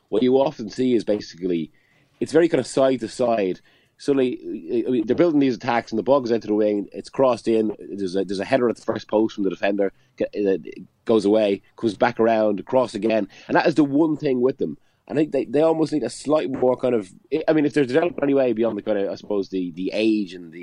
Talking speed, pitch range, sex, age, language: 255 wpm, 105-130 Hz, male, 30-49, English